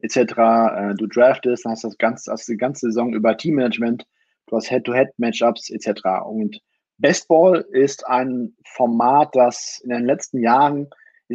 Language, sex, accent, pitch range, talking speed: German, male, German, 115-165 Hz, 145 wpm